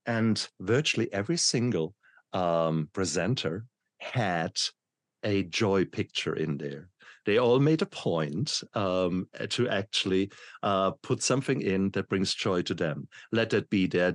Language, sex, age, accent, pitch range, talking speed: English, male, 50-69, German, 90-115 Hz, 140 wpm